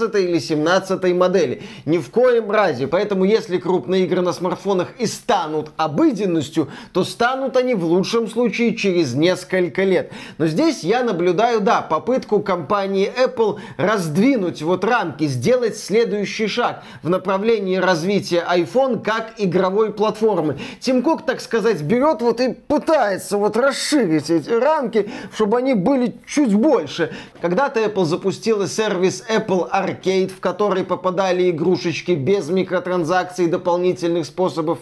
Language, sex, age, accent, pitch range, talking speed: Russian, male, 30-49, native, 175-225 Hz, 135 wpm